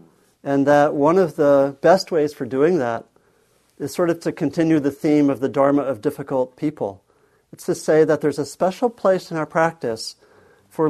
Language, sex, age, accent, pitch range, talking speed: English, male, 50-69, American, 135-165 Hz, 195 wpm